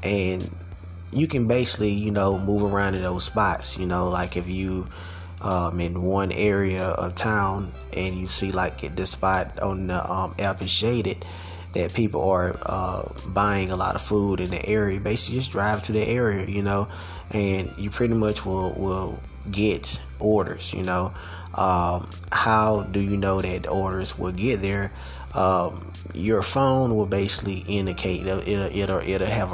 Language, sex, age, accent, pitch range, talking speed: English, male, 20-39, American, 90-105 Hz, 175 wpm